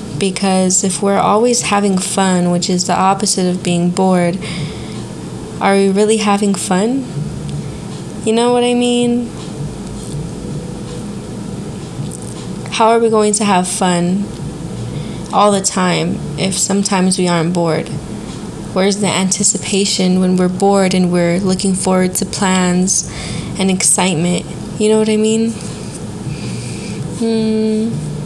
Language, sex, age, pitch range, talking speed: English, female, 20-39, 185-220 Hz, 125 wpm